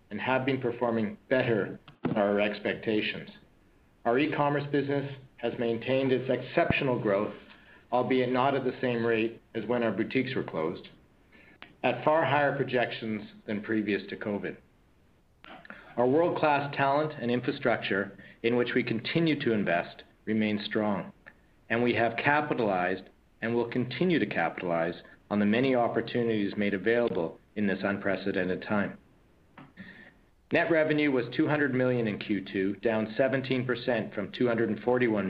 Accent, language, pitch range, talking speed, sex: American, English, 105-130 Hz, 135 wpm, male